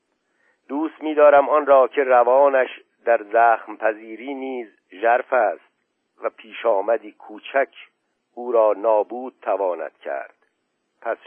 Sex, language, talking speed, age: male, Persian, 115 wpm, 50-69